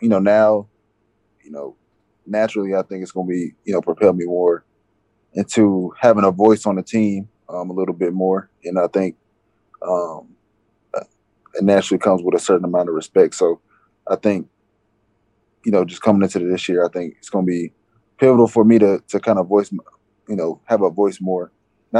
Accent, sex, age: American, male, 20-39